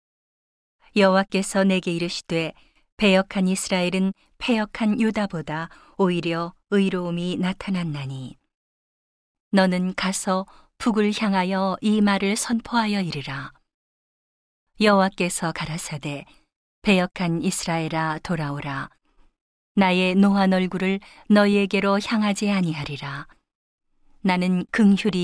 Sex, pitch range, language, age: female, 165-200 Hz, Korean, 40-59